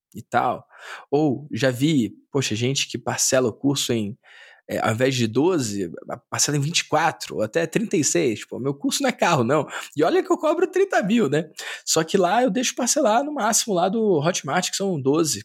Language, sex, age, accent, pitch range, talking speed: Portuguese, male, 20-39, Brazilian, 125-180 Hz, 200 wpm